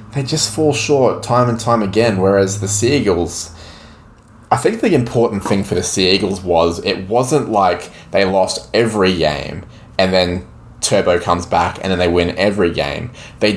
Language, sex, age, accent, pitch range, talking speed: English, male, 20-39, Australian, 85-115 Hz, 175 wpm